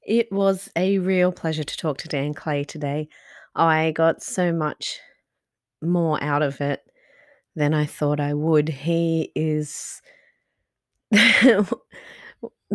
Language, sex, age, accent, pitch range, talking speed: English, female, 30-49, Australian, 155-190 Hz, 120 wpm